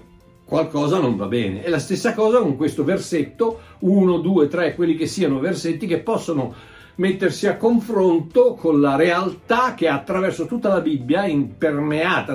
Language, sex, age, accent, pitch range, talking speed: Italian, male, 60-79, native, 125-180 Hz, 155 wpm